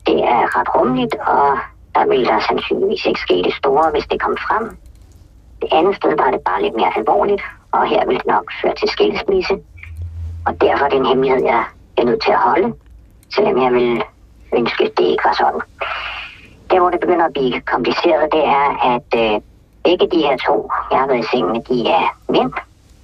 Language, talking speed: Danish, 205 wpm